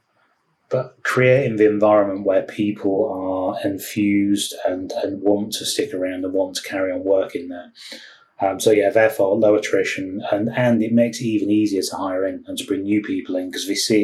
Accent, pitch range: British, 95-115 Hz